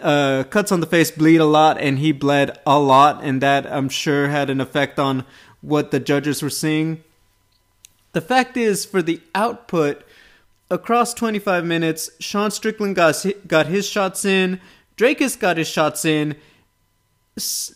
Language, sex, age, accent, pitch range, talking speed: English, male, 30-49, American, 150-175 Hz, 160 wpm